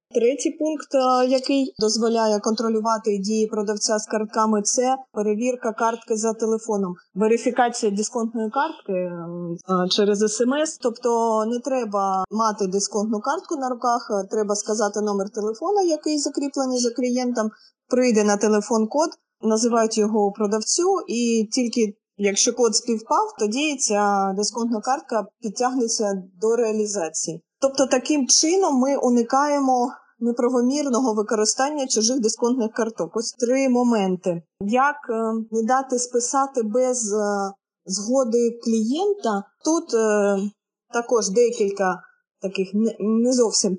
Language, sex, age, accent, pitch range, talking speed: Ukrainian, female, 20-39, native, 210-255 Hz, 110 wpm